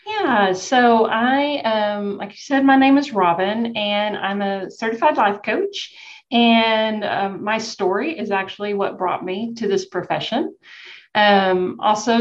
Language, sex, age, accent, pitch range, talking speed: English, female, 40-59, American, 185-225 Hz, 150 wpm